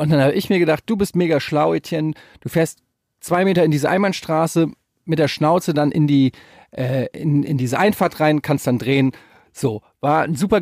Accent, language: German, German